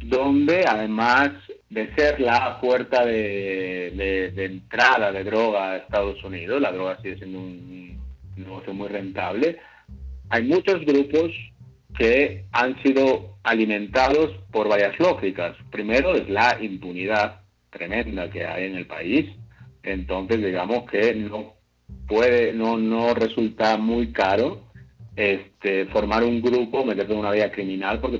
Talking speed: 135 wpm